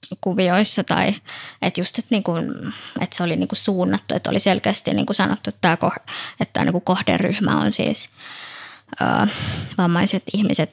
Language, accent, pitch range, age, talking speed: Finnish, native, 170-195 Hz, 20-39, 140 wpm